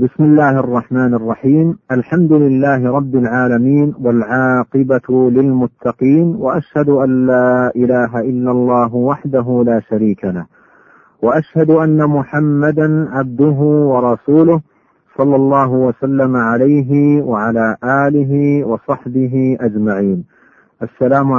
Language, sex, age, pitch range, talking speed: Arabic, male, 50-69, 125-150 Hz, 95 wpm